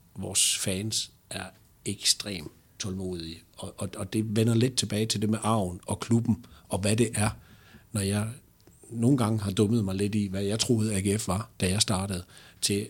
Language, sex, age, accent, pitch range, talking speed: Danish, male, 60-79, native, 95-115 Hz, 185 wpm